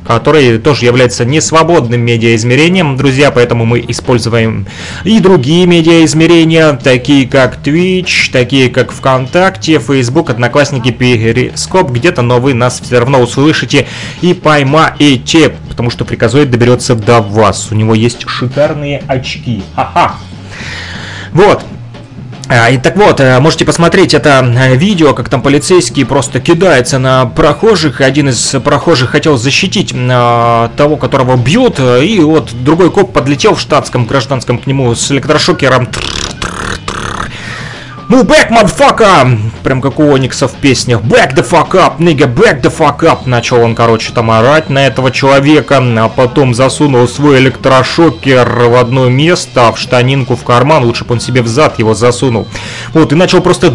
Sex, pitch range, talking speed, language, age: male, 120-155 Hz, 145 wpm, Russian, 20-39